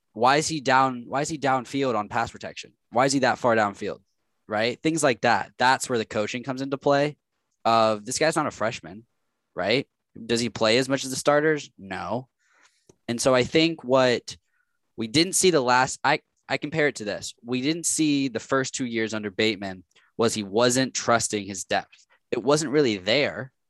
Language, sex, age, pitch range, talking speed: English, male, 10-29, 110-135 Hz, 200 wpm